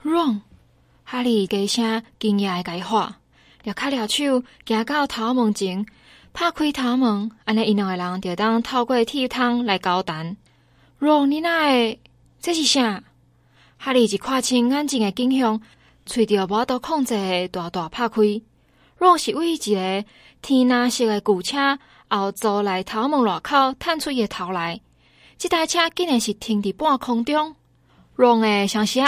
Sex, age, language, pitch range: female, 20-39, Chinese, 210-280 Hz